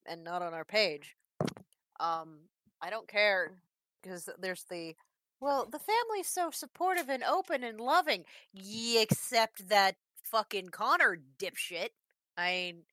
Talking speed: 135 wpm